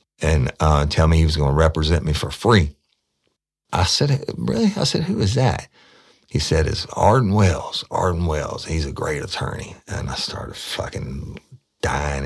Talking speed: 175 wpm